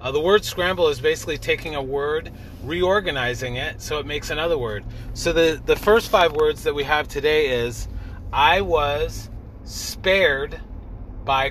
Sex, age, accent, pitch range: male, 30-49, American, 115-165 Hz